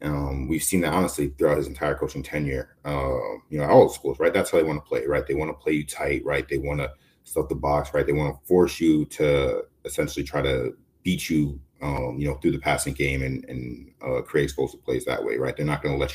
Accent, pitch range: American, 70-90 Hz